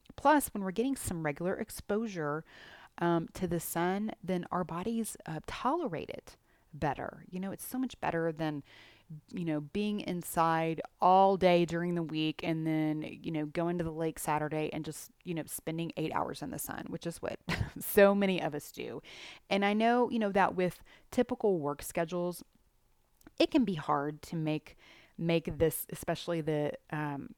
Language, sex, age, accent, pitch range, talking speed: English, female, 30-49, American, 155-200 Hz, 180 wpm